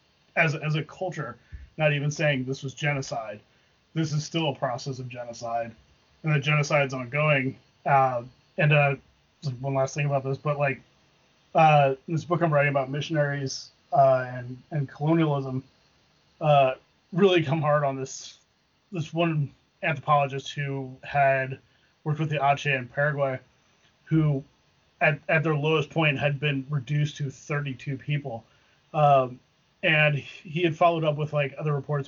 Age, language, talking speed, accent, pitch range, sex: 30-49, English, 155 wpm, American, 135-155 Hz, male